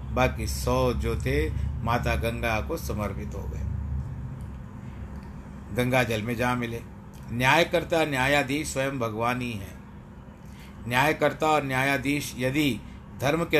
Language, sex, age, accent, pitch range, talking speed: Hindi, male, 60-79, native, 110-140 Hz, 115 wpm